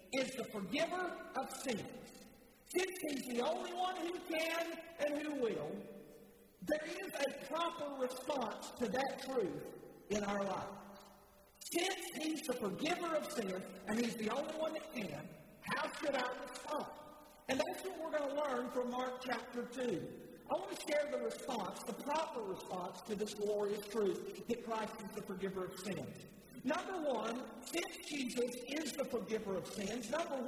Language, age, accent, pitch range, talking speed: English, 40-59, American, 220-310 Hz, 165 wpm